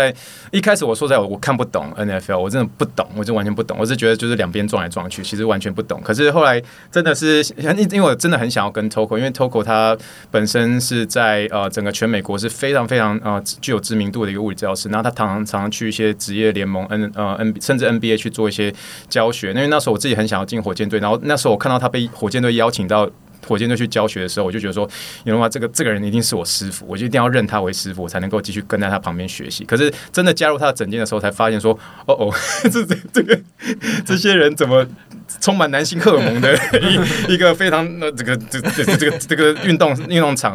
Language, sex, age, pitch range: Chinese, male, 20-39, 105-145 Hz